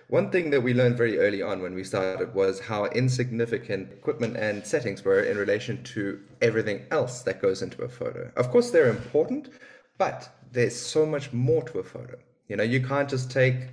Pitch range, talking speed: 120-170 Hz, 200 wpm